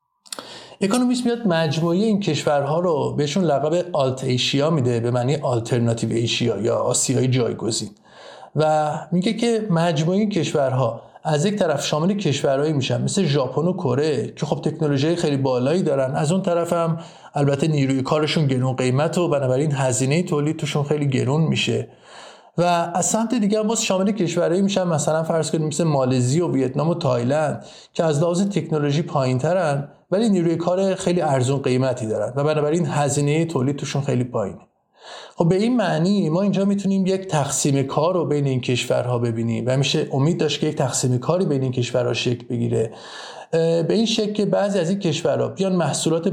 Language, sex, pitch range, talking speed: Persian, male, 135-180 Hz, 165 wpm